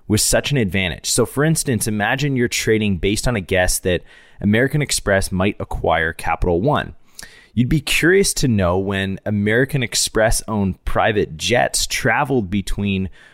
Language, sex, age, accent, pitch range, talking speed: English, male, 20-39, American, 90-115 Hz, 155 wpm